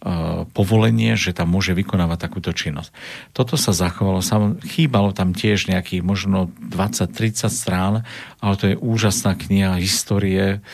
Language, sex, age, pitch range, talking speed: Slovak, male, 50-69, 90-100 Hz, 130 wpm